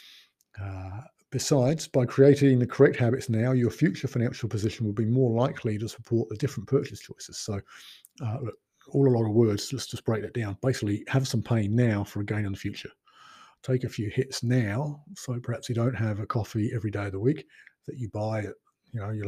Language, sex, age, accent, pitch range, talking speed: English, male, 50-69, British, 105-130 Hz, 210 wpm